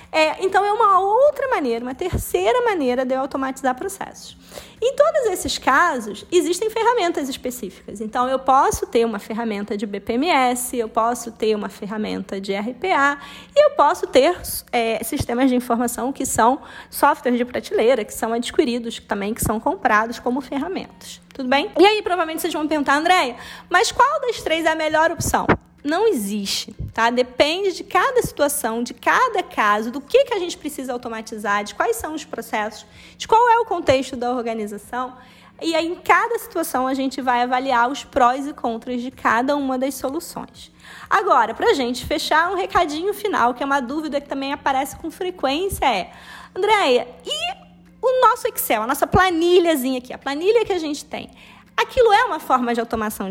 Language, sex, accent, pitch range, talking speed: Portuguese, female, Brazilian, 240-355 Hz, 180 wpm